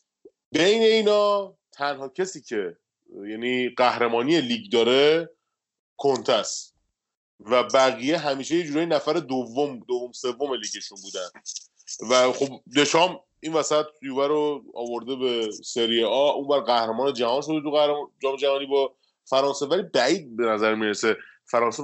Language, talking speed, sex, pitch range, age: Persian, 135 wpm, male, 125-180 Hz, 30-49